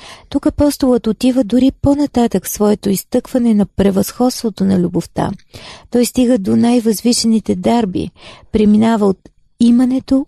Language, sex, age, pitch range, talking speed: Bulgarian, female, 40-59, 205-245 Hz, 110 wpm